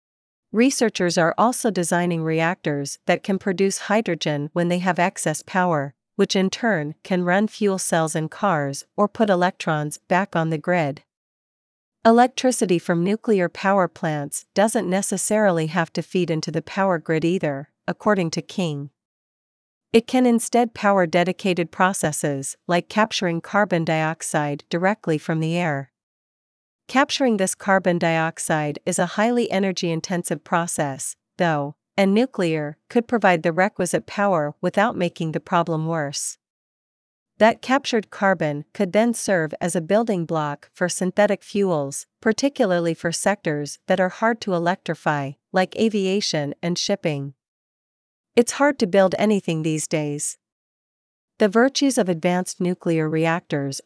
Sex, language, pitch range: female, Vietnamese, 160-205 Hz